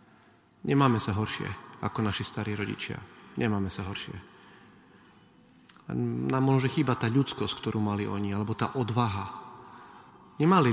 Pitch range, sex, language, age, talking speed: 110-135 Hz, male, Slovak, 30-49, 125 wpm